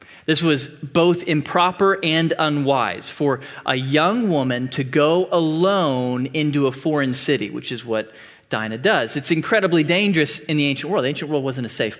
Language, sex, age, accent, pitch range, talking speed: English, male, 30-49, American, 145-185 Hz, 175 wpm